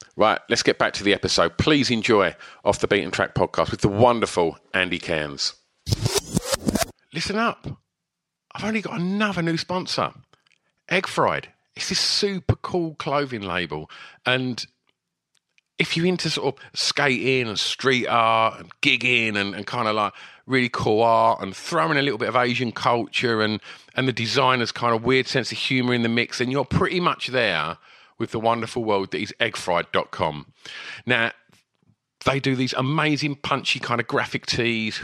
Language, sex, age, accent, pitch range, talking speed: English, male, 40-59, British, 105-140 Hz, 170 wpm